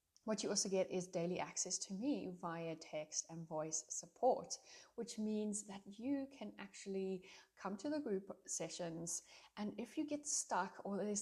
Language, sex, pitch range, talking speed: English, female, 170-205 Hz, 170 wpm